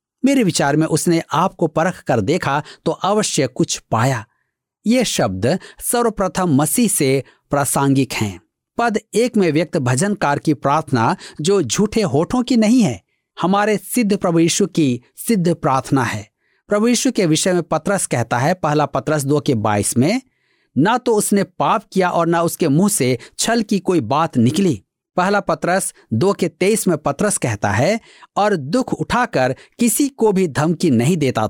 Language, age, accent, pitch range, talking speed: Hindi, 50-69, native, 145-205 Hz, 165 wpm